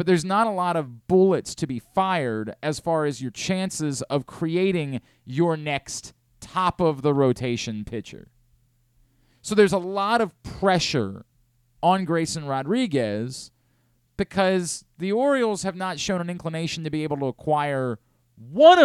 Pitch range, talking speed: 120-180 Hz, 140 wpm